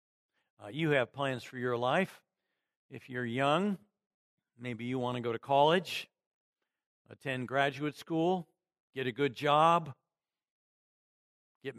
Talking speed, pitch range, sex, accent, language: 125 wpm, 130-170 Hz, male, American, English